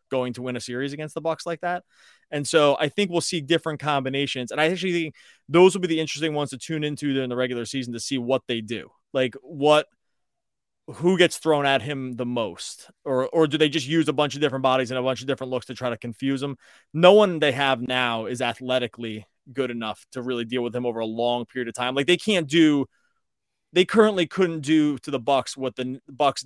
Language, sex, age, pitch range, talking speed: English, male, 20-39, 120-155 Hz, 240 wpm